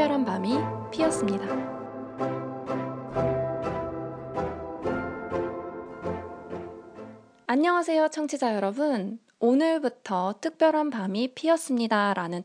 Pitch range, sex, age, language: 180-280 Hz, female, 20-39, Korean